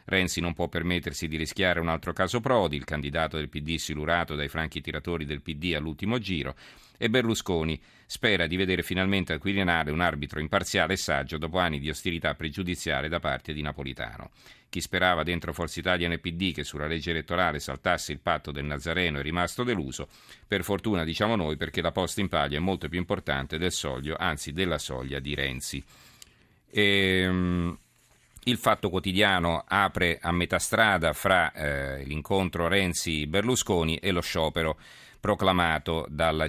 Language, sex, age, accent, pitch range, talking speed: Italian, male, 40-59, native, 75-95 Hz, 165 wpm